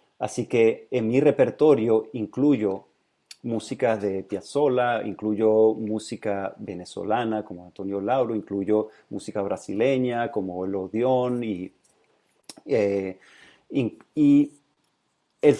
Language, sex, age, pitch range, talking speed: English, male, 40-59, 105-130 Hz, 95 wpm